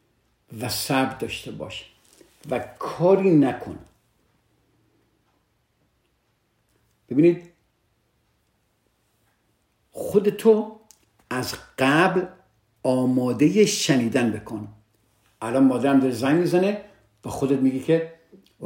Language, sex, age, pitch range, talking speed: Persian, male, 50-69, 110-160 Hz, 75 wpm